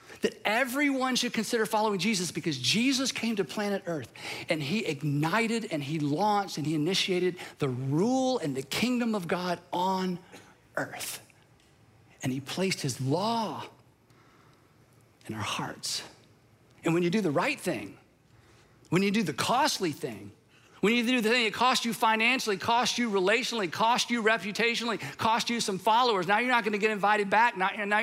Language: English